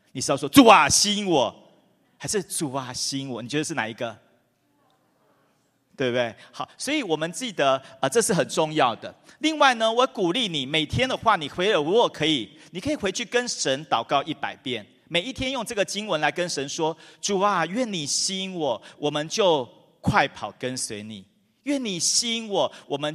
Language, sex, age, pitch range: English, male, 40-59, 135-200 Hz